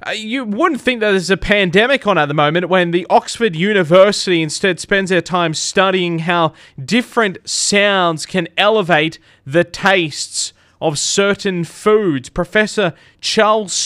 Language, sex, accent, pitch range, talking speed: English, male, Australian, 150-190 Hz, 140 wpm